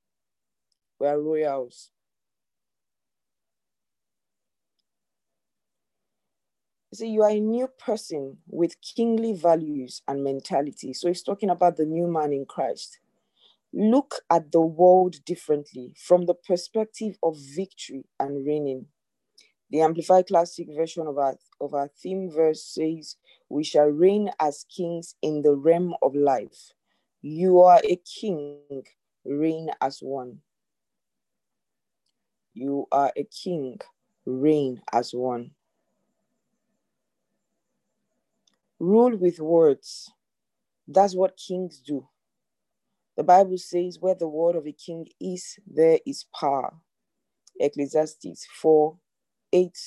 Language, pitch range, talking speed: English, 145-185 Hz, 110 wpm